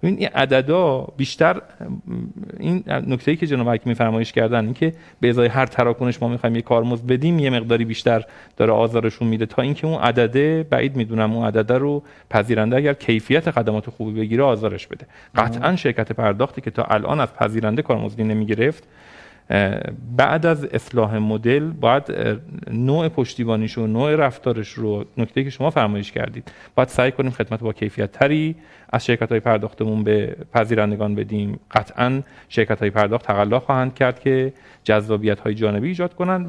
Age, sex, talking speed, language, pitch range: 40-59, male, 160 wpm, Persian, 110-140 Hz